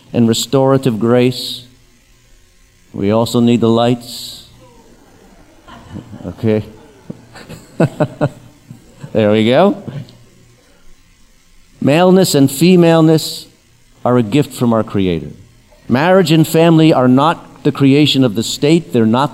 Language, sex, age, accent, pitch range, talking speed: English, male, 50-69, American, 120-145 Hz, 100 wpm